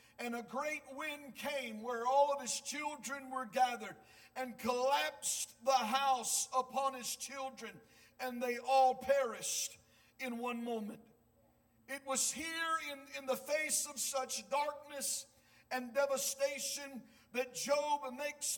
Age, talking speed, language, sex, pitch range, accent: 50-69, 130 wpm, English, male, 245-275 Hz, American